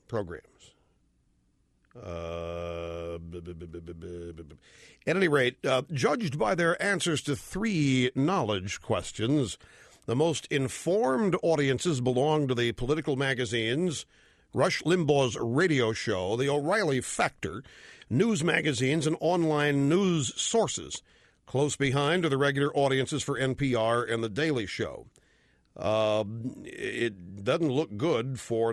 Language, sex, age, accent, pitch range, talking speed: English, male, 50-69, American, 115-160 Hz, 115 wpm